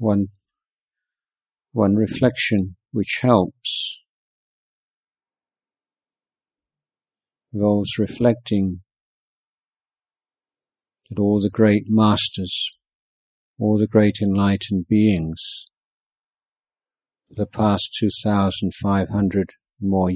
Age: 50-69